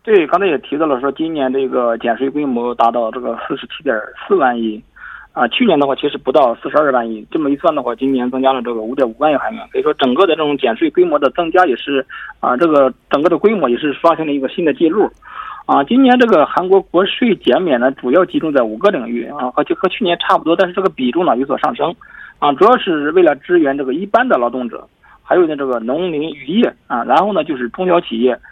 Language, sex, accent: Korean, male, Chinese